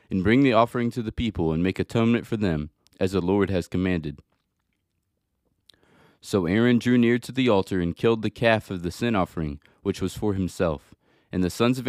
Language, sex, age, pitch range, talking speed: English, male, 20-39, 90-115 Hz, 200 wpm